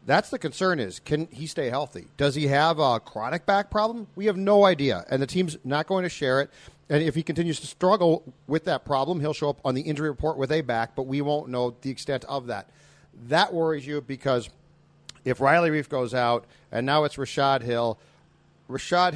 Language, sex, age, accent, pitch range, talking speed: English, male, 40-59, American, 130-160 Hz, 215 wpm